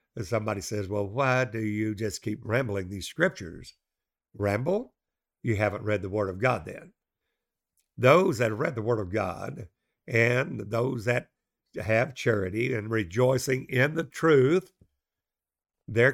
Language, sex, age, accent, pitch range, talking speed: English, male, 60-79, American, 110-135 Hz, 145 wpm